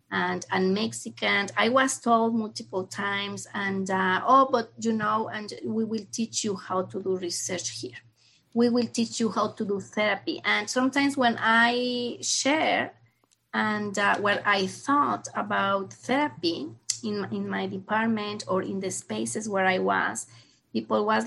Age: 30-49